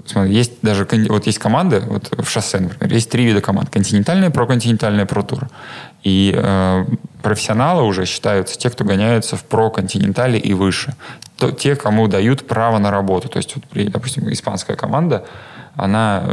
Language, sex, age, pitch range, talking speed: Russian, male, 20-39, 100-125 Hz, 160 wpm